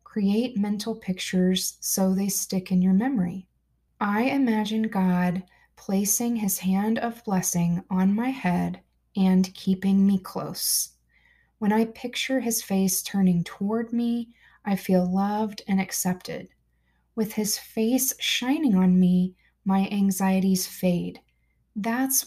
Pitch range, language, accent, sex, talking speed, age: 185-225 Hz, English, American, female, 125 wpm, 20-39